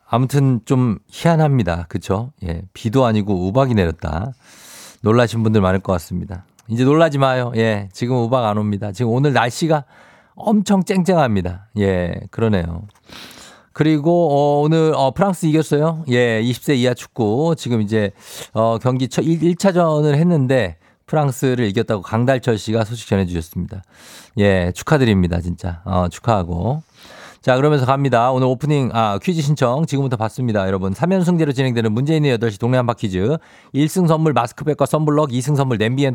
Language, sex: Korean, male